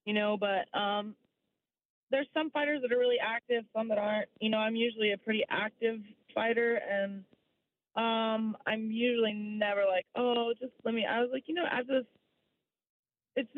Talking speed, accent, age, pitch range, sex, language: 175 wpm, American, 20-39, 190-235 Hz, female, English